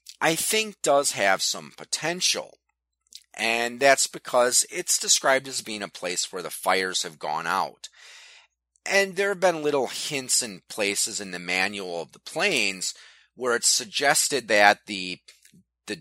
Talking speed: 155 wpm